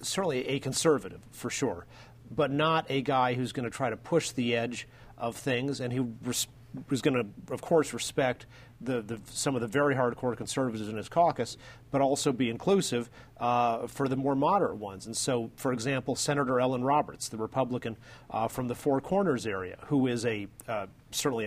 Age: 40-59